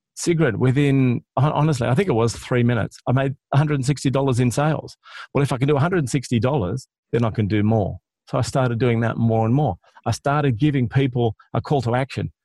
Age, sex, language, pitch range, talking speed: 40-59, male, English, 125-155 Hz, 235 wpm